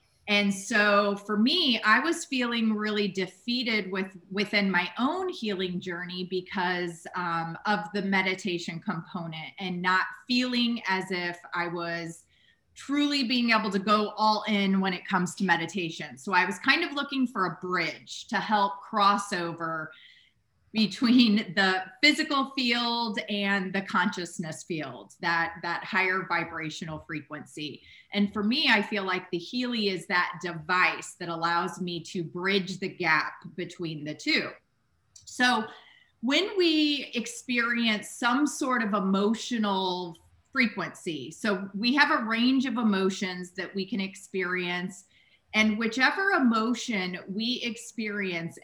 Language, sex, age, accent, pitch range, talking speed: English, female, 30-49, American, 180-230 Hz, 140 wpm